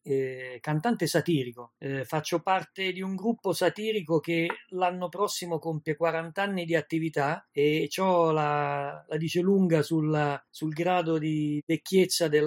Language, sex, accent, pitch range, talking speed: Italian, male, native, 155-190 Hz, 135 wpm